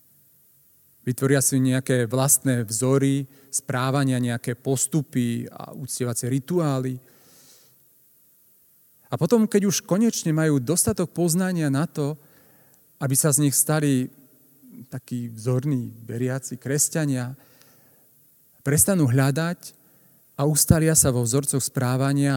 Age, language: 40-59, Slovak